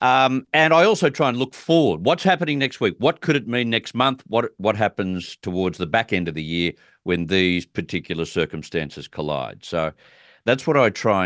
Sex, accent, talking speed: male, Australian, 205 wpm